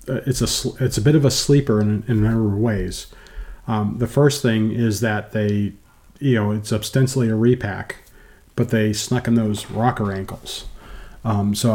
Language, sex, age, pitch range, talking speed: English, male, 40-59, 105-130 Hz, 185 wpm